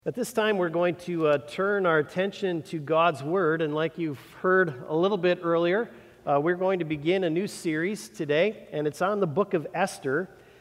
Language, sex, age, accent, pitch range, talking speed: English, male, 50-69, American, 150-185 Hz, 210 wpm